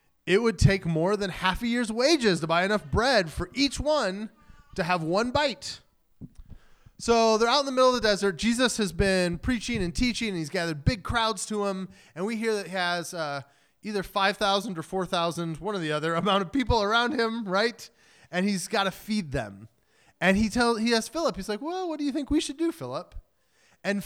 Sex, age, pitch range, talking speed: male, 20-39, 170-240 Hz, 215 wpm